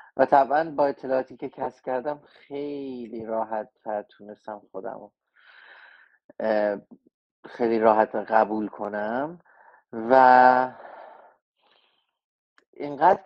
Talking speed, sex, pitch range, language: 75 wpm, male, 115-145 Hz, Persian